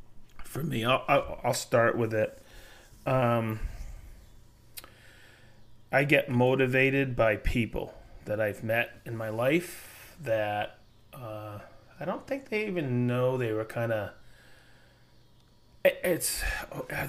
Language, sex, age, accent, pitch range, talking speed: English, male, 30-49, American, 115-140 Hz, 115 wpm